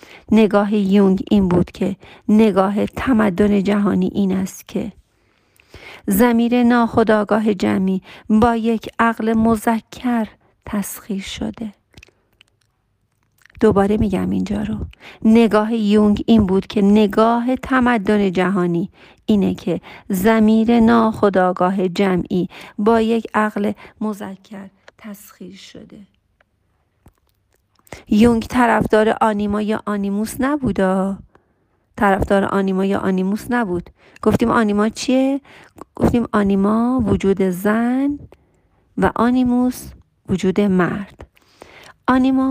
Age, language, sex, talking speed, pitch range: 40-59, Persian, female, 95 wpm, 195-230 Hz